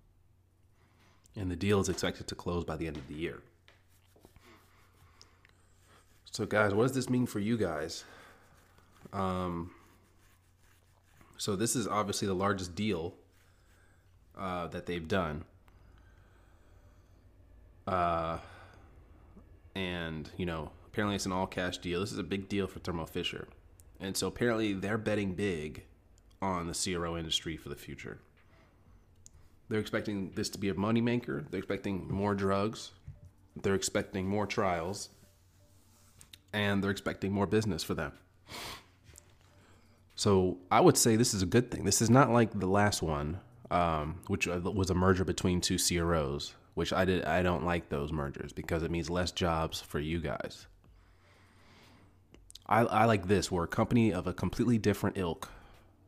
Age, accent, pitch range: 30-49, American, 90-100 Hz